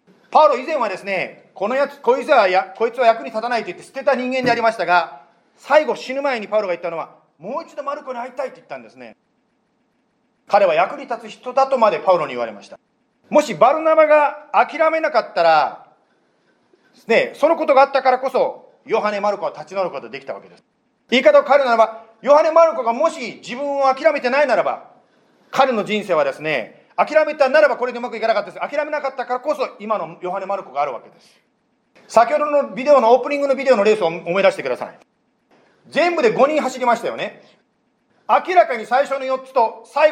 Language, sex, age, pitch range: Japanese, male, 40-59, 220-290 Hz